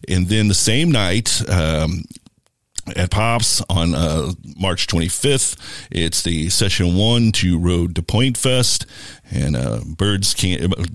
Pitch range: 85-115 Hz